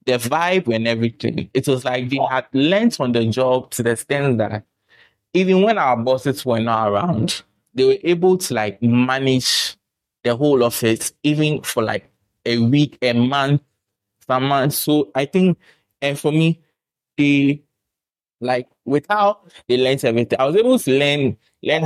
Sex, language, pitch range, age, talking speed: male, English, 115-145 Hz, 20-39, 165 wpm